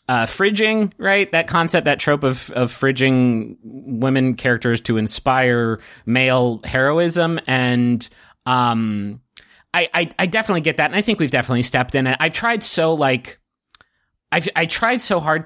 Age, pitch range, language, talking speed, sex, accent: 30-49, 115-145 Hz, English, 160 wpm, male, American